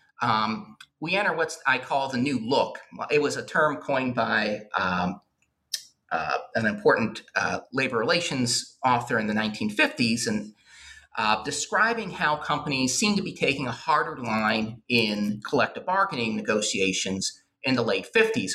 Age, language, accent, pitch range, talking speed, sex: 40-59, English, American, 115-155 Hz, 150 wpm, male